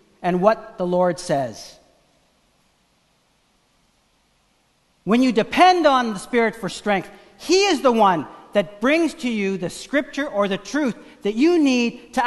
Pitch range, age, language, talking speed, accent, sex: 200-250 Hz, 50-69, English, 145 wpm, American, male